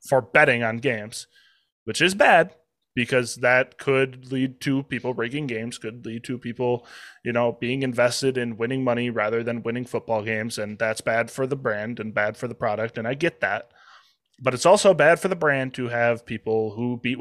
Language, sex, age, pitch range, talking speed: English, male, 20-39, 115-145 Hz, 200 wpm